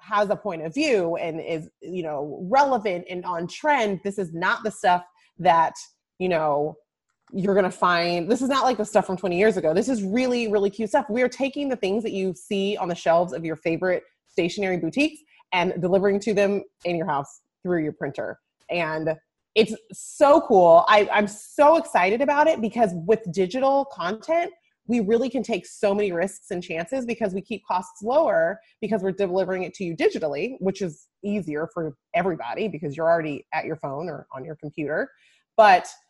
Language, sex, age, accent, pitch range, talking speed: English, female, 30-49, American, 170-230 Hz, 195 wpm